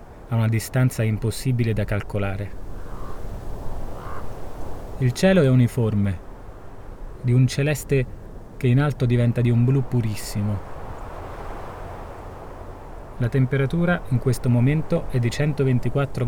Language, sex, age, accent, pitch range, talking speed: Italian, male, 30-49, native, 105-125 Hz, 105 wpm